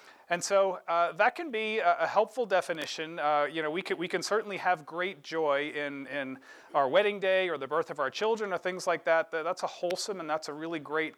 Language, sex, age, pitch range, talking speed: English, male, 40-59, 155-190 Hz, 230 wpm